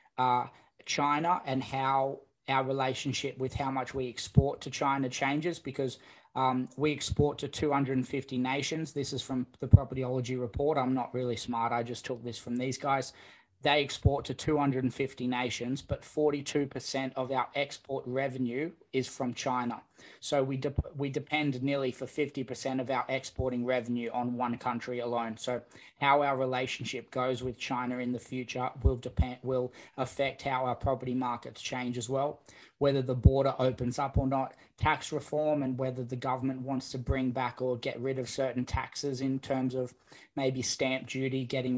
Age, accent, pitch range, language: 20-39, Australian, 125-135 Hz, English